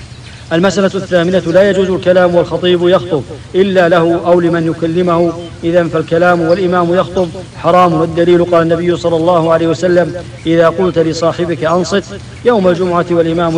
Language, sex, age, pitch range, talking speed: English, male, 50-69, 165-180 Hz, 135 wpm